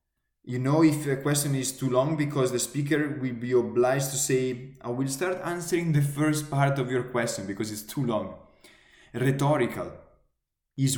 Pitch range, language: 115-145 Hz, English